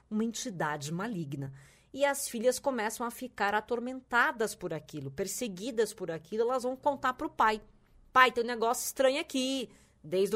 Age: 20-39